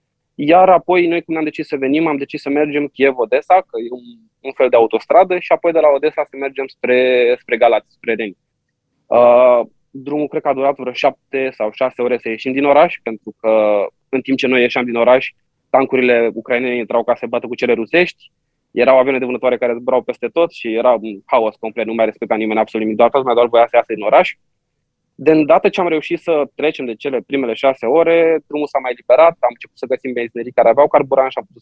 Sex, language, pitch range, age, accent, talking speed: male, Romanian, 115-145 Hz, 20-39, native, 230 wpm